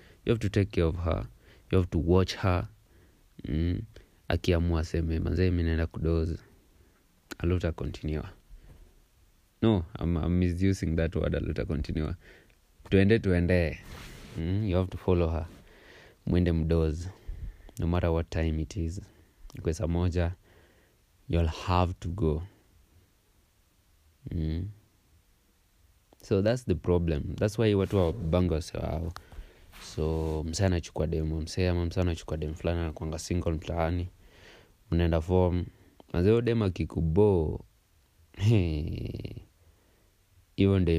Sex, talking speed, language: male, 110 wpm, English